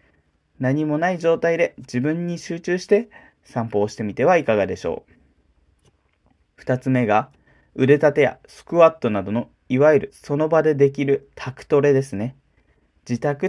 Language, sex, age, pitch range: Japanese, male, 20-39, 105-155 Hz